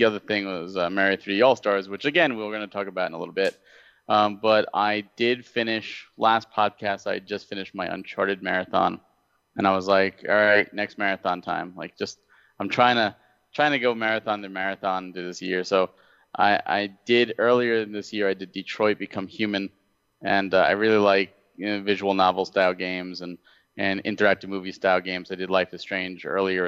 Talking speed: 205 wpm